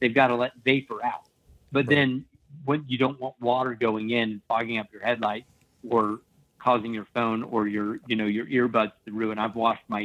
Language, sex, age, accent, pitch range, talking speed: English, male, 50-69, American, 110-130 Hz, 205 wpm